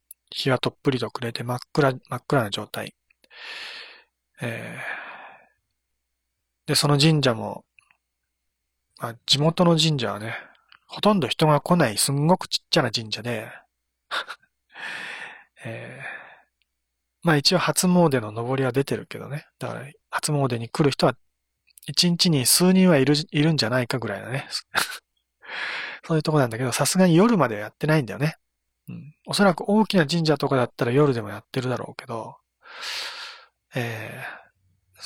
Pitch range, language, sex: 115-150 Hz, Japanese, male